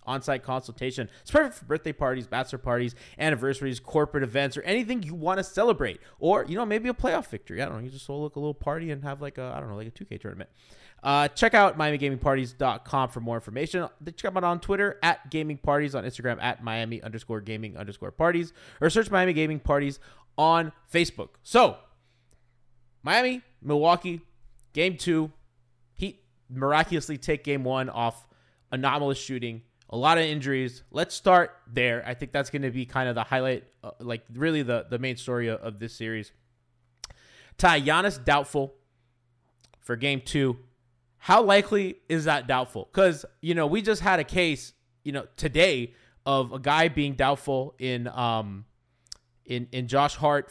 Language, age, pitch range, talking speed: English, 20-39, 120-155 Hz, 175 wpm